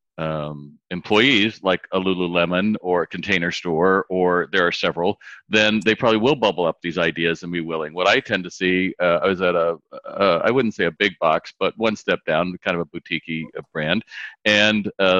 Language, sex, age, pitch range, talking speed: English, male, 40-59, 85-105 Hz, 205 wpm